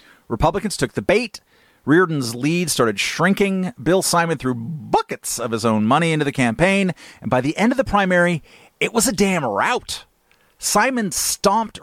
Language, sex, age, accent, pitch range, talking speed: English, male, 40-59, American, 120-190 Hz, 165 wpm